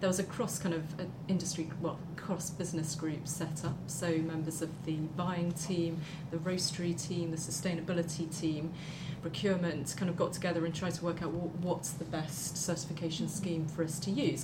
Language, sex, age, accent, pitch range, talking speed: English, female, 30-49, British, 160-175 Hz, 185 wpm